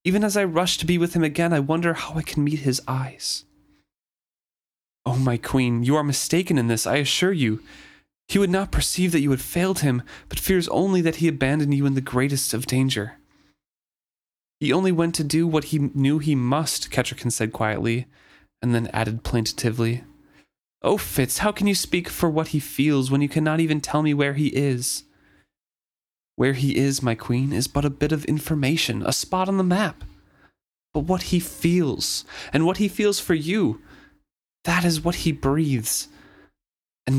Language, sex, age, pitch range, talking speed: English, male, 30-49, 120-165 Hz, 190 wpm